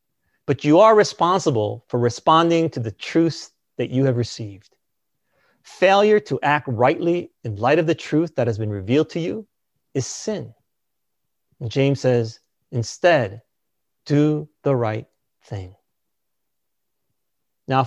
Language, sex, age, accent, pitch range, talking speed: English, male, 30-49, American, 120-165 Hz, 130 wpm